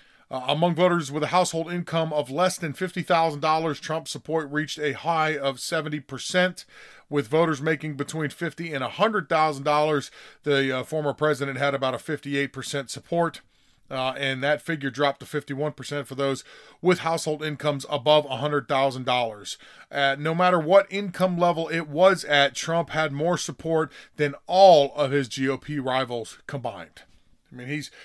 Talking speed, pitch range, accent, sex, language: 150 wpm, 135-165 Hz, American, male, English